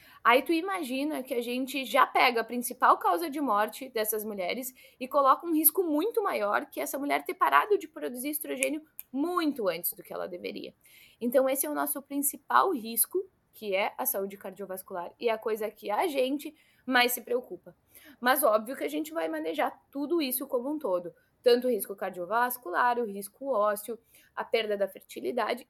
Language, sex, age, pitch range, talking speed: Portuguese, female, 20-39, 205-275 Hz, 185 wpm